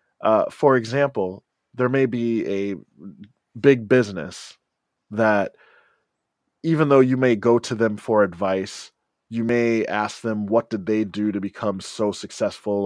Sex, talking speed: male, 145 wpm